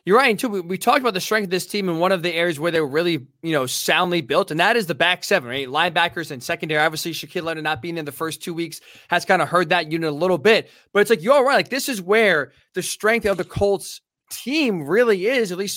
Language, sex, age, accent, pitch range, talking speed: English, male, 20-39, American, 165-210 Hz, 275 wpm